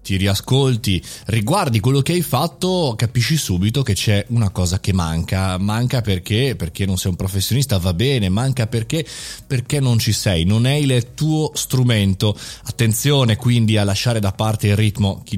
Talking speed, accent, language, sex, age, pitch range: 170 wpm, native, Italian, male, 20-39, 100-135 Hz